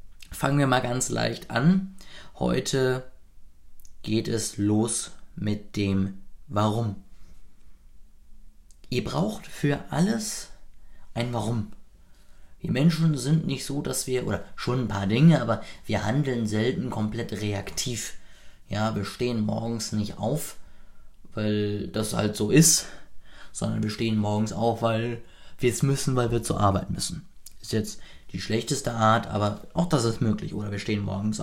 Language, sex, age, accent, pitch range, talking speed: German, male, 20-39, German, 105-140 Hz, 145 wpm